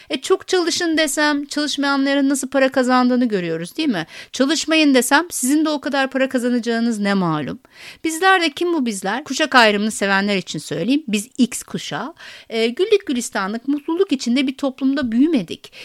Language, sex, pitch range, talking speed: Turkish, female, 215-280 Hz, 160 wpm